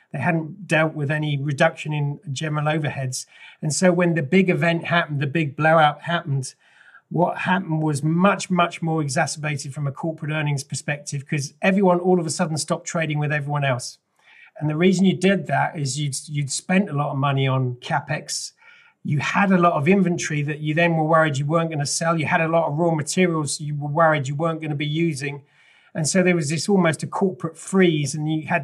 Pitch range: 150-175 Hz